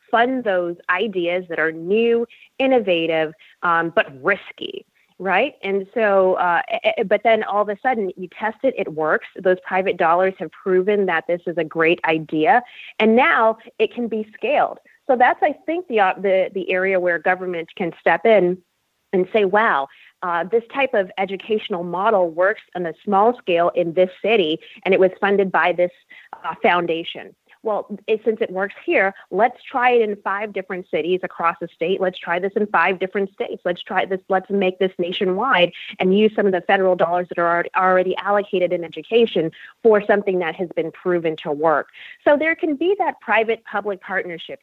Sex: female